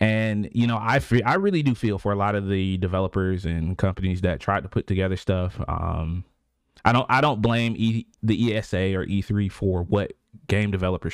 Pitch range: 90-115 Hz